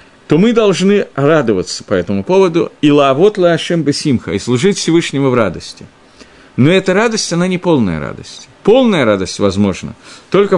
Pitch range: 120-175 Hz